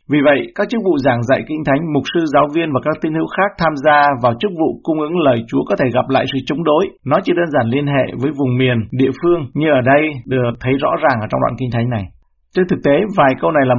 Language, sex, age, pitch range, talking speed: Vietnamese, male, 60-79, 125-150 Hz, 285 wpm